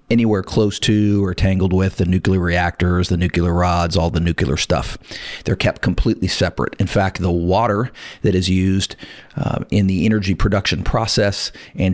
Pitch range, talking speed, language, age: 90-105 Hz, 170 wpm, English, 40-59